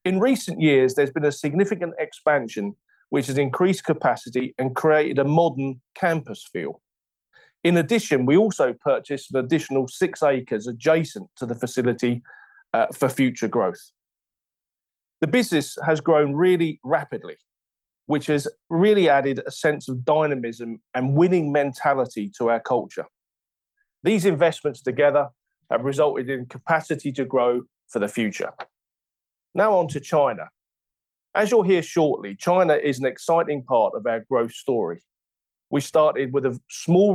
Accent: British